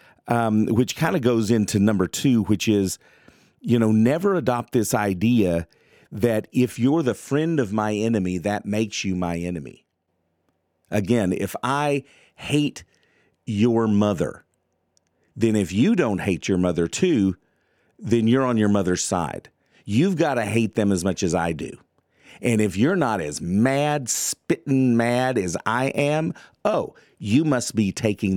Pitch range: 95-120 Hz